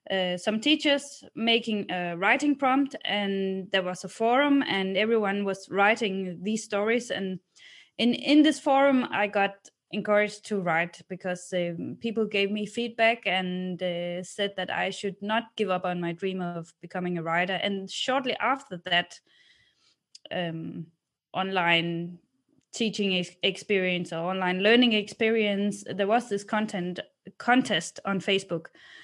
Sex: female